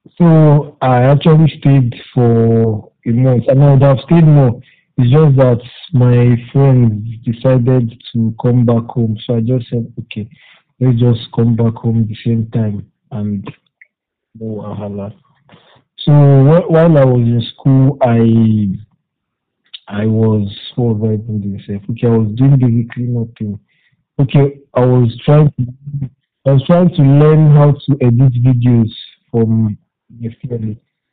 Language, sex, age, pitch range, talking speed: English, male, 50-69, 115-135 Hz, 150 wpm